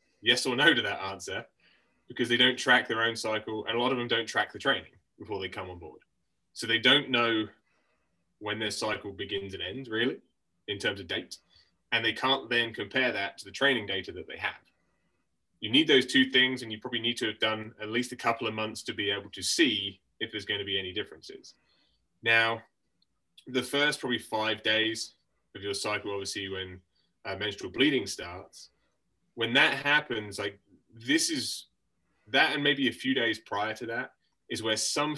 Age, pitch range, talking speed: 20-39, 100-125 Hz, 200 wpm